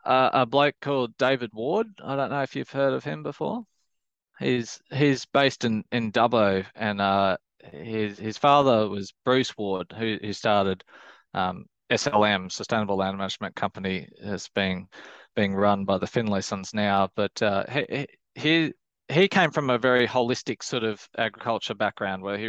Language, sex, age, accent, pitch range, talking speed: English, male, 20-39, Australian, 95-115 Hz, 165 wpm